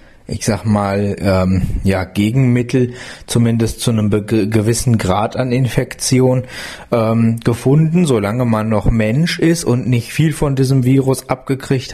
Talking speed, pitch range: 135 wpm, 95-125 Hz